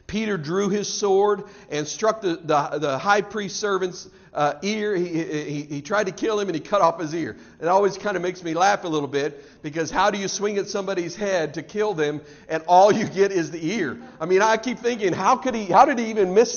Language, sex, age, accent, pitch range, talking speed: English, male, 50-69, American, 175-245 Hz, 245 wpm